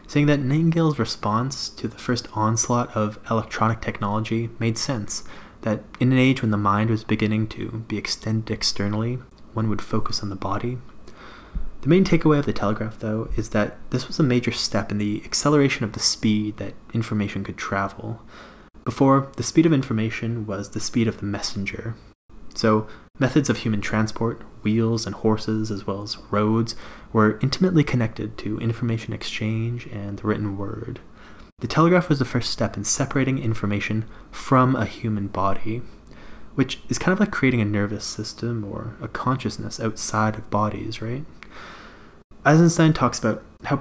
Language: English